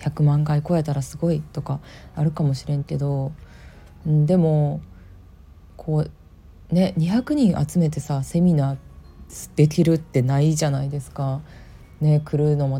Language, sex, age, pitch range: Japanese, female, 20-39, 135-165 Hz